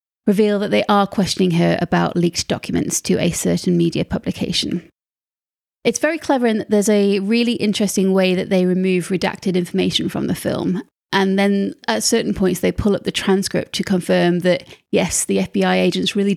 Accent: British